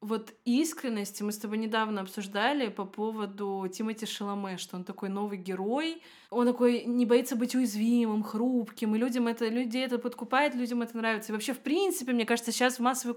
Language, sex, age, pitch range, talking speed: Russian, female, 20-39, 225-270 Hz, 185 wpm